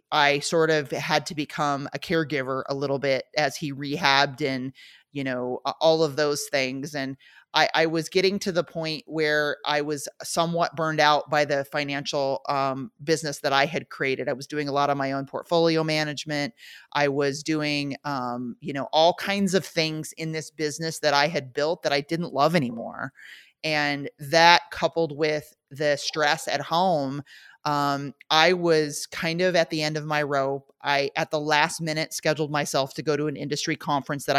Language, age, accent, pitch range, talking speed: English, 30-49, American, 145-165 Hz, 190 wpm